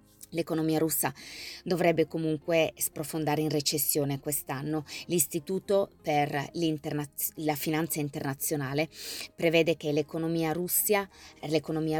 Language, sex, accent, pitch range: Italian, female, native, 150-170 Hz